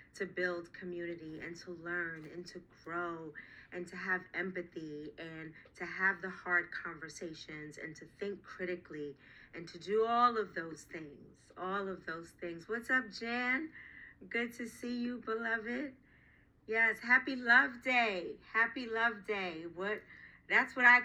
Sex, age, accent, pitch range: female, 40-59, American, 170-215 Hz